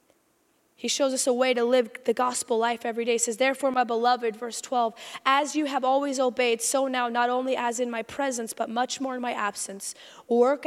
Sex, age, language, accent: female, 20-39, English, American